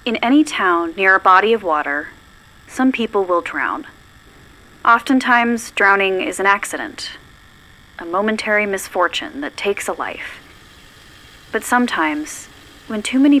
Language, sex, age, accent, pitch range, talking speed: English, female, 30-49, American, 180-245 Hz, 130 wpm